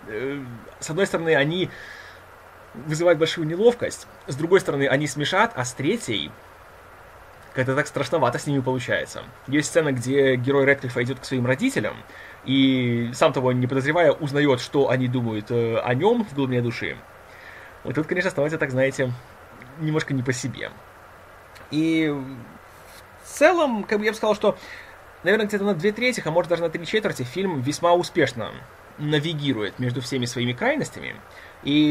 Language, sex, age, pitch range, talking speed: Russian, male, 20-39, 125-165 Hz, 155 wpm